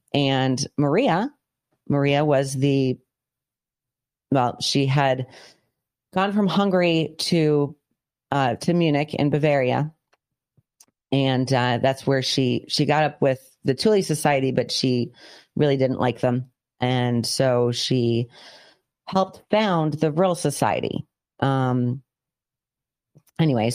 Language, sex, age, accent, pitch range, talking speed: English, female, 30-49, American, 125-150 Hz, 115 wpm